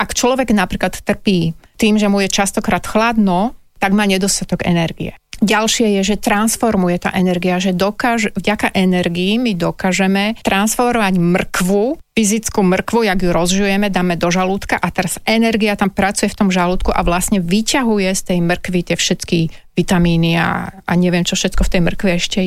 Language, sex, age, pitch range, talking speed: Slovak, female, 30-49, 180-215 Hz, 165 wpm